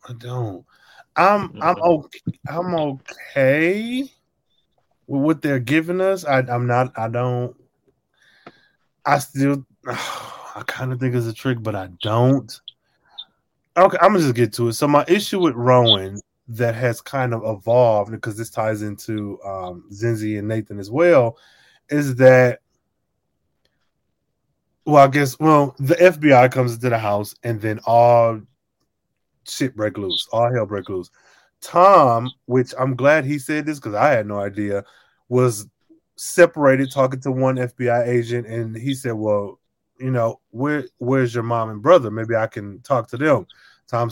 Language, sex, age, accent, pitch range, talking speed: English, male, 20-39, American, 110-135 Hz, 160 wpm